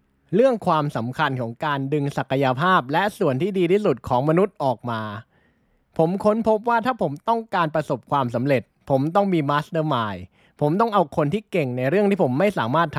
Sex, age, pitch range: male, 20-39, 130-185 Hz